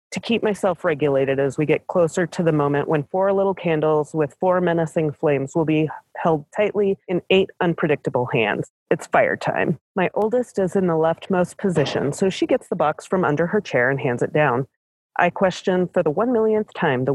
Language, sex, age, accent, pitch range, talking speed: English, female, 30-49, American, 150-200 Hz, 205 wpm